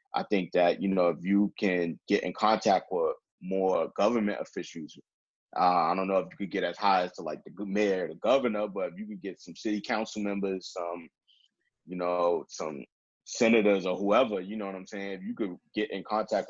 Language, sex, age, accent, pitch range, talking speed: English, male, 20-39, American, 95-110 Hz, 220 wpm